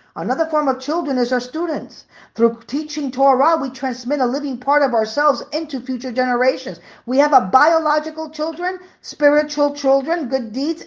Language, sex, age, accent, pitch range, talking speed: English, female, 50-69, American, 215-290 Hz, 160 wpm